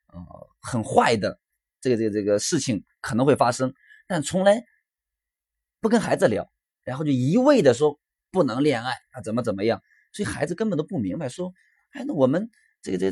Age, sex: 20-39, male